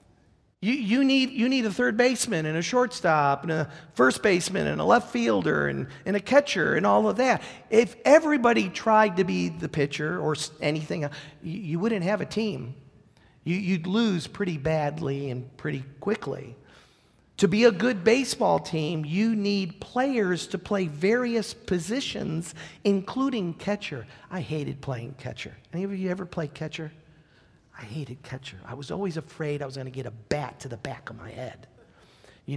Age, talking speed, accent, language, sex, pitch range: 50-69, 175 wpm, American, English, male, 155-225 Hz